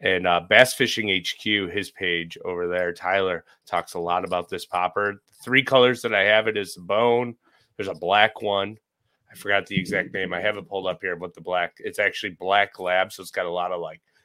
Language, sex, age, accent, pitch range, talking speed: English, male, 30-49, American, 90-110 Hz, 230 wpm